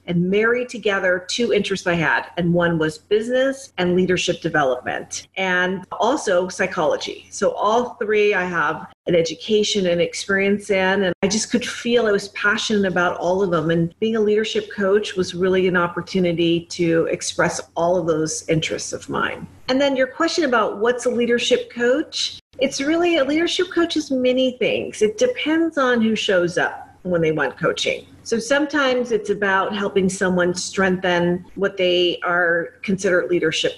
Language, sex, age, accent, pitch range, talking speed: English, female, 40-59, American, 175-235 Hz, 170 wpm